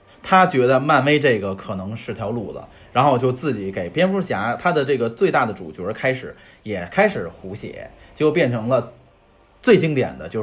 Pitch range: 100-145 Hz